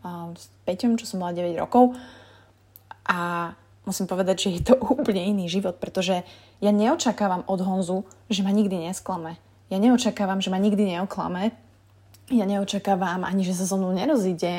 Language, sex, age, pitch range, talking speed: Slovak, female, 20-39, 170-210 Hz, 160 wpm